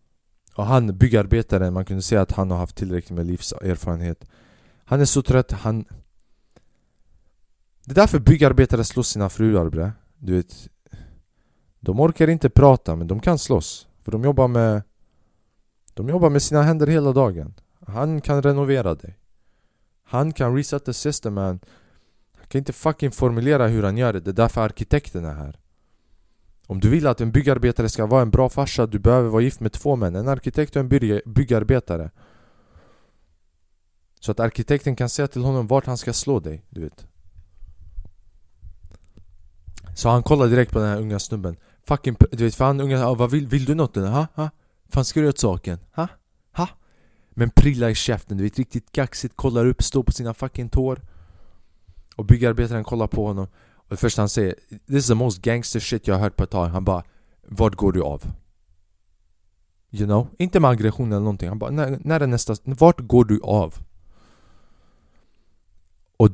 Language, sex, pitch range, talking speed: Swedish, male, 90-130 Hz, 175 wpm